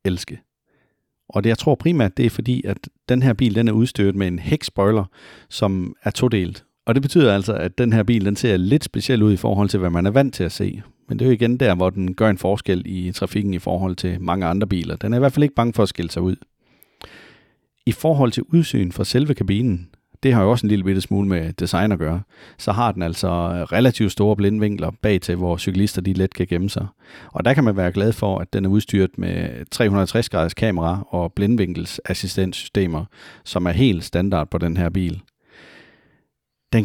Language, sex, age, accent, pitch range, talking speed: Danish, male, 40-59, native, 90-115 Hz, 220 wpm